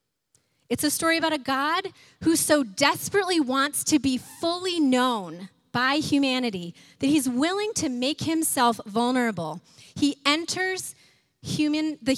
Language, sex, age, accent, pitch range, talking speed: English, female, 30-49, American, 215-305 Hz, 130 wpm